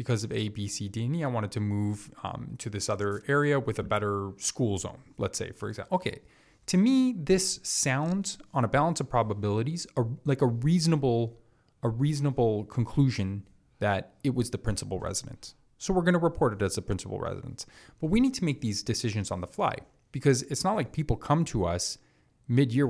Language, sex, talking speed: English, male, 200 wpm